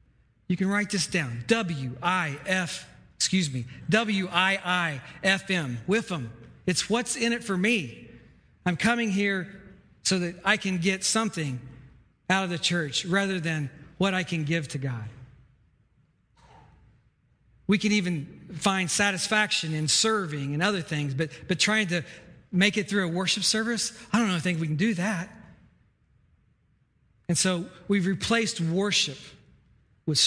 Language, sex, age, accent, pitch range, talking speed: English, male, 40-59, American, 140-190 Hz, 145 wpm